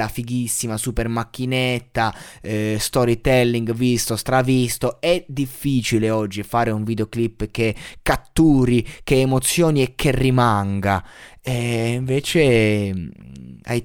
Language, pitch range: Italian, 95-125 Hz